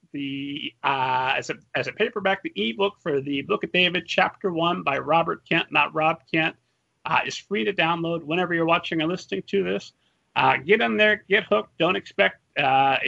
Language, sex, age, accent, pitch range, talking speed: English, male, 40-59, American, 155-210 Hz, 195 wpm